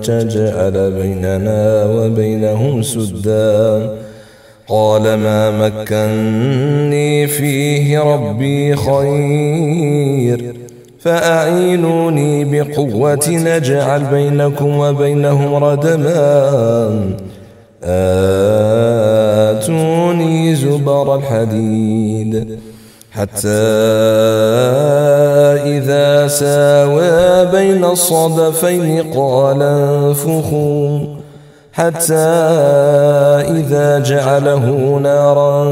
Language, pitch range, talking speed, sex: Finnish, 110-145 Hz, 50 wpm, male